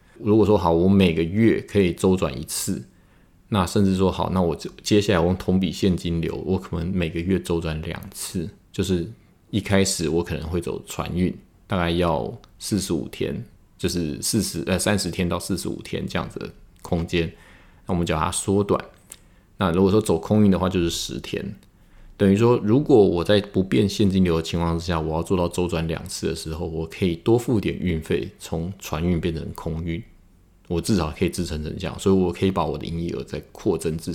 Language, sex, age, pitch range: Chinese, male, 20-39, 85-100 Hz